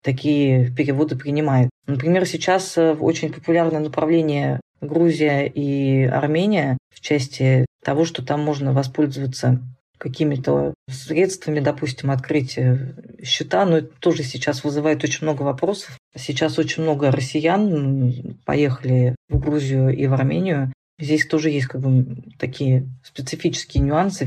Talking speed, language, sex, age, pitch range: 120 wpm, Russian, female, 40-59, 130-155 Hz